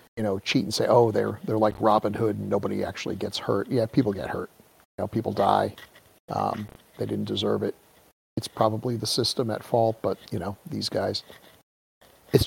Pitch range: 105-120 Hz